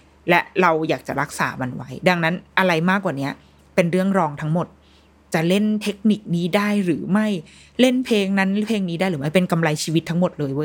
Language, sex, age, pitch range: Thai, female, 20-39, 155-215 Hz